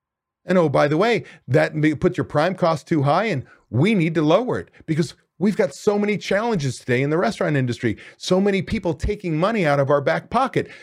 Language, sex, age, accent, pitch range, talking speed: English, male, 40-59, American, 130-190 Hz, 215 wpm